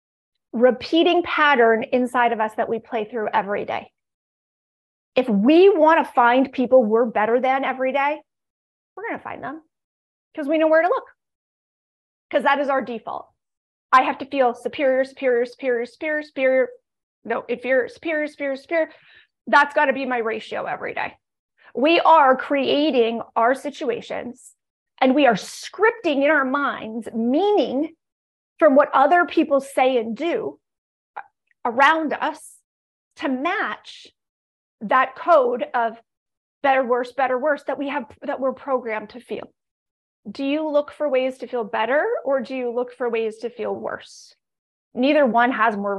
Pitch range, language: 240-295 Hz, English